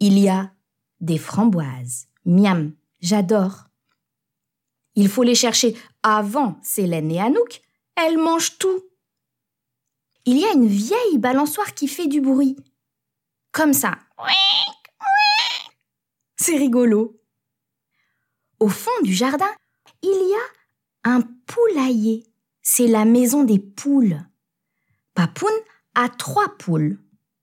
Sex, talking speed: female, 110 wpm